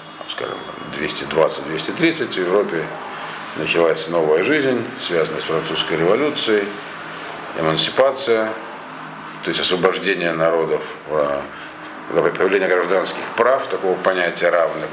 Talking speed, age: 90 wpm, 50-69